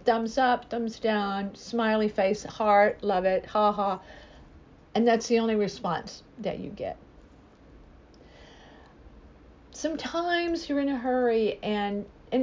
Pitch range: 190-240 Hz